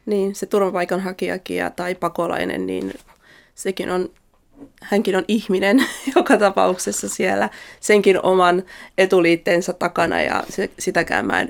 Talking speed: 120 wpm